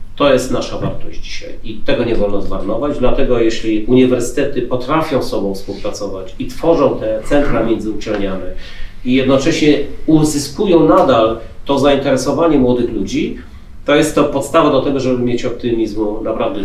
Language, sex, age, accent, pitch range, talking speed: Polish, male, 40-59, native, 115-145 Hz, 145 wpm